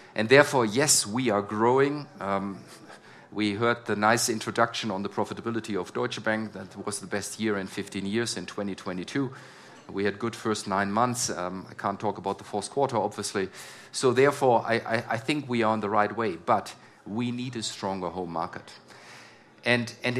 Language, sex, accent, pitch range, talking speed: German, male, German, 105-130 Hz, 190 wpm